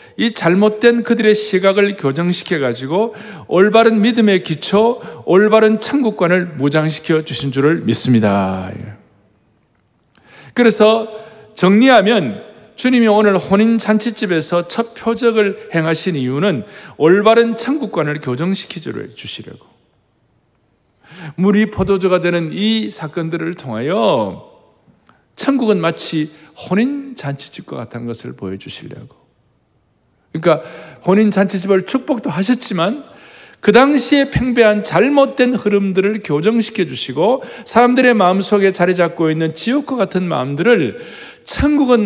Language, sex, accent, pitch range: Korean, male, native, 155-225 Hz